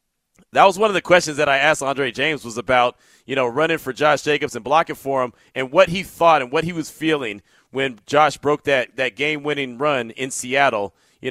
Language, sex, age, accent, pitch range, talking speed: English, male, 30-49, American, 125-165 Hz, 225 wpm